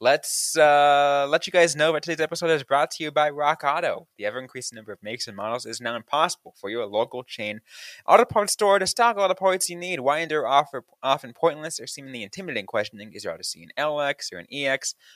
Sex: male